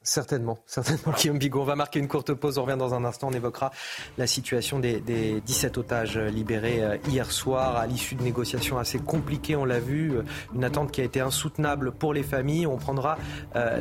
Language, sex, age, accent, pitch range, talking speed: French, male, 30-49, French, 125-155 Hz, 205 wpm